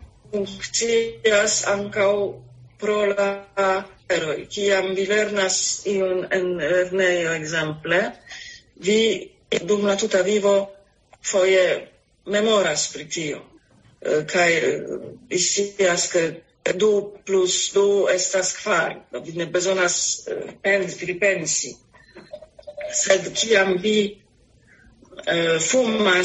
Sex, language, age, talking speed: female, English, 40-59, 65 wpm